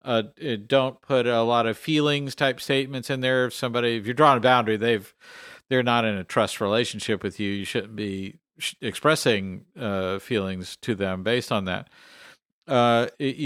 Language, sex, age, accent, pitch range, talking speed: English, male, 50-69, American, 110-140 Hz, 175 wpm